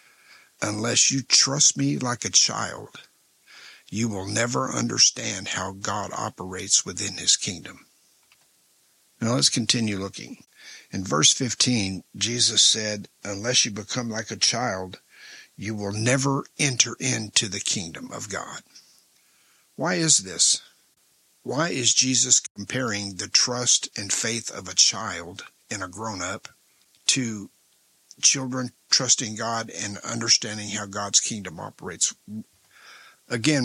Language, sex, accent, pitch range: English, male, American, 100-125 Hz